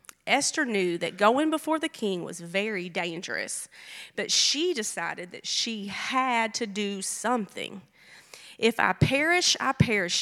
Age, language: 30-49, English